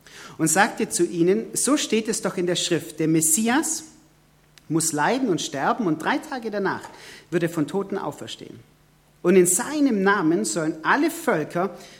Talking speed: 165 wpm